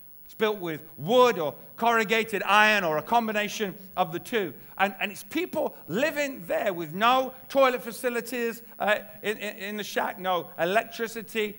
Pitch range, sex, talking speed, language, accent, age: 180-235 Hz, male, 155 wpm, English, British, 50-69